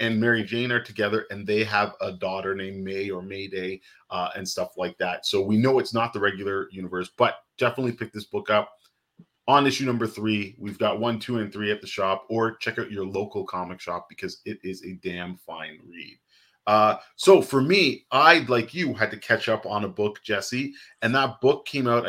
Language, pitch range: English, 100-125 Hz